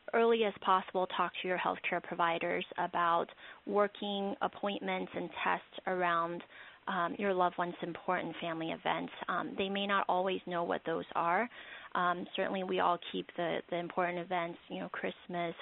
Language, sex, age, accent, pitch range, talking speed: English, female, 30-49, American, 175-195 Hz, 160 wpm